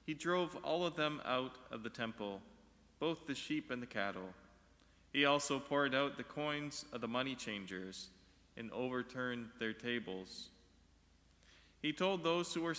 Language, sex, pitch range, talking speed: English, male, 95-145 Hz, 160 wpm